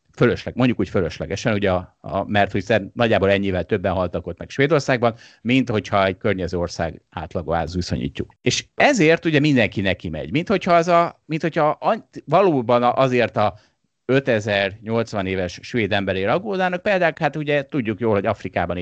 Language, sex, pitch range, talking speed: Hungarian, male, 95-135 Hz, 145 wpm